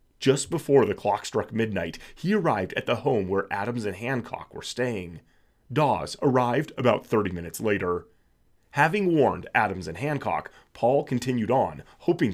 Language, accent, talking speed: English, American, 155 wpm